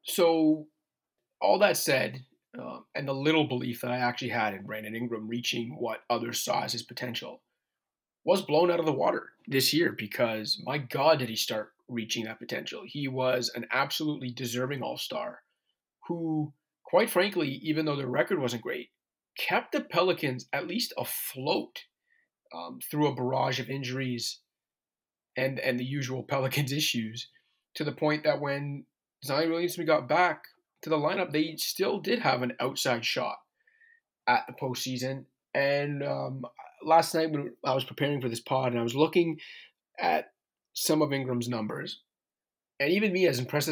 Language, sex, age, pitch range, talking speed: English, male, 30-49, 125-160 Hz, 165 wpm